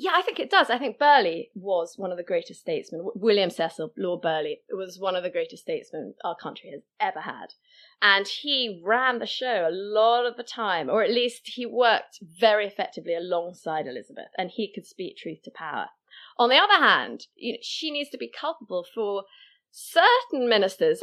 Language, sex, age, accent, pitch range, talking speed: English, female, 20-39, British, 180-245 Hz, 190 wpm